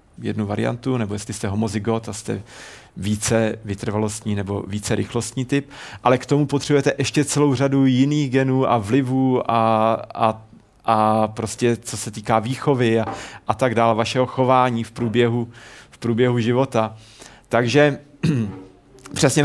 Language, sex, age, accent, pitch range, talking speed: Czech, male, 40-59, native, 115-130 Hz, 140 wpm